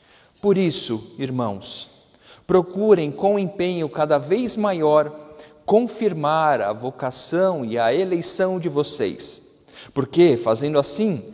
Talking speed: 105 wpm